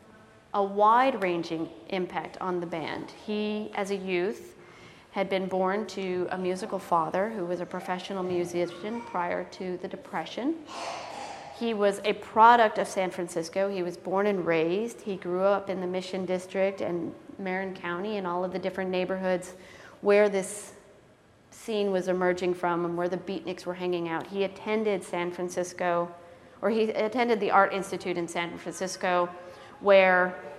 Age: 40-59